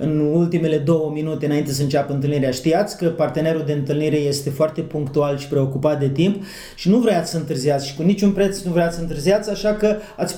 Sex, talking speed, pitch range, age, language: male, 210 wpm, 155-215 Hz, 30-49, Romanian